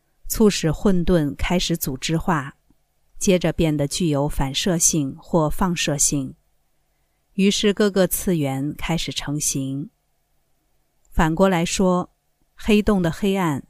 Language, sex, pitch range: Chinese, female, 145-185 Hz